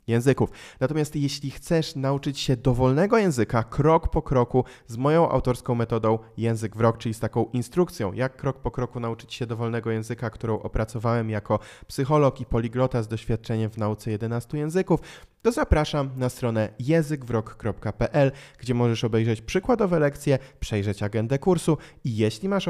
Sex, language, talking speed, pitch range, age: male, Polish, 155 wpm, 110-145 Hz, 20-39